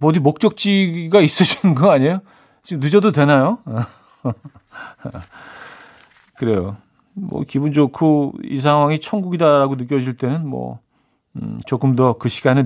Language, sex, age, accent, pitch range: Korean, male, 40-59, native, 115-160 Hz